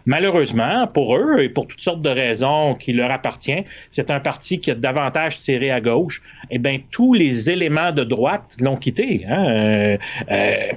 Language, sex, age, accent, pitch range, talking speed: French, male, 30-49, Canadian, 125-165 Hz, 190 wpm